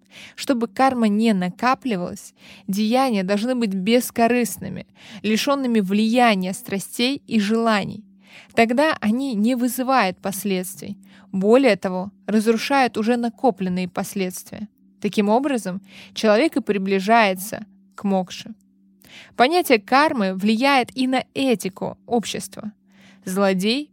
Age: 20-39